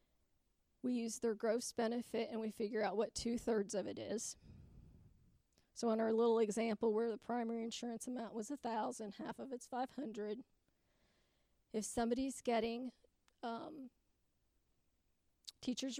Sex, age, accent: female, 40-59, American